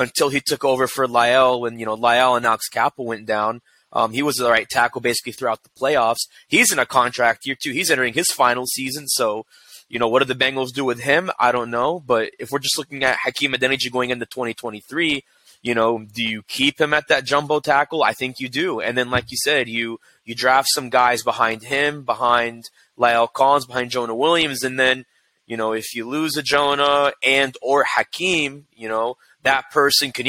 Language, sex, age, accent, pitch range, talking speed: English, male, 20-39, American, 120-140 Hz, 215 wpm